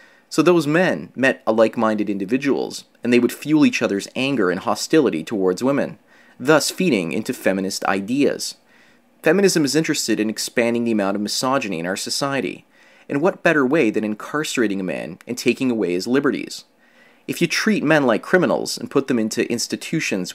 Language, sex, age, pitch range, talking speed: English, male, 30-49, 110-150 Hz, 170 wpm